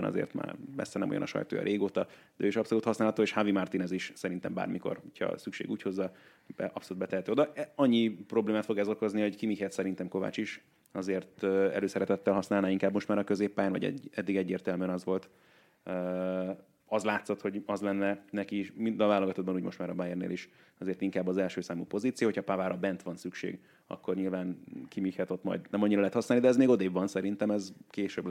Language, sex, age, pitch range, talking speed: Hungarian, male, 30-49, 95-105 Hz, 195 wpm